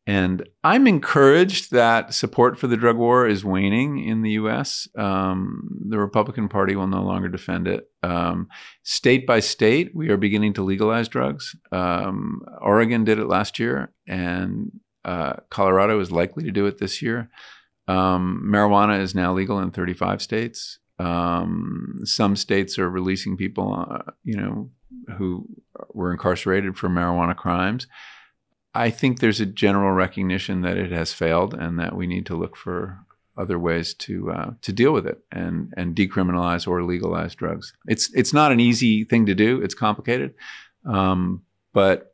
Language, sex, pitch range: English, male, 90-115 Hz